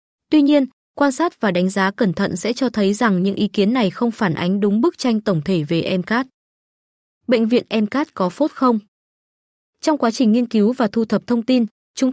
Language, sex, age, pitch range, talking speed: Vietnamese, female, 20-39, 190-255 Hz, 220 wpm